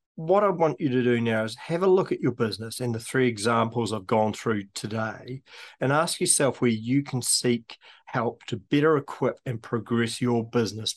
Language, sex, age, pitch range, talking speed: English, male, 40-59, 110-135 Hz, 200 wpm